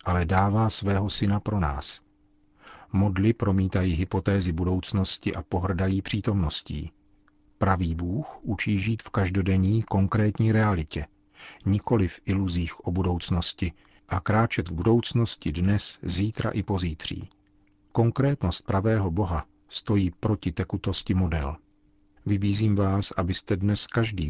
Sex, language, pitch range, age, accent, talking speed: male, Czech, 90-110 Hz, 50-69, native, 115 wpm